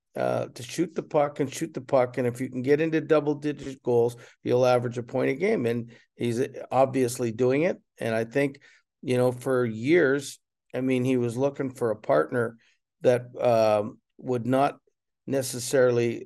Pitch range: 115-140 Hz